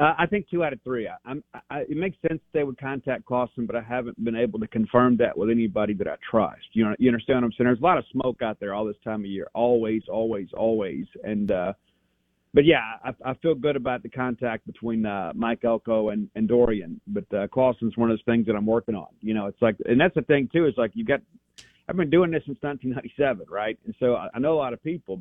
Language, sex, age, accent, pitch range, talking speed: English, male, 50-69, American, 110-135 Hz, 260 wpm